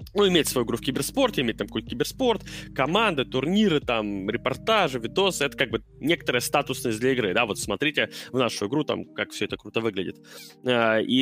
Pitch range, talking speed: 115-165 Hz, 185 wpm